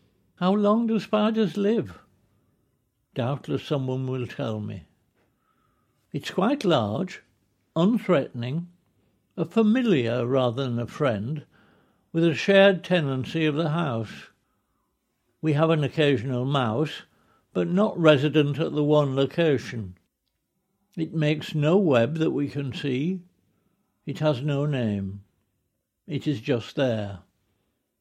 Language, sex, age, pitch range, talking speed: English, male, 60-79, 120-170 Hz, 120 wpm